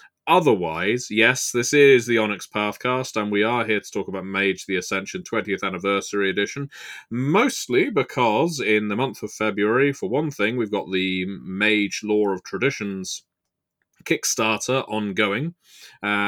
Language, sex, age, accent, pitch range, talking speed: English, male, 30-49, British, 95-115 Hz, 145 wpm